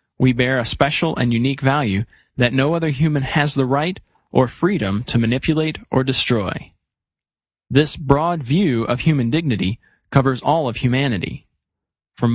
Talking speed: 150 wpm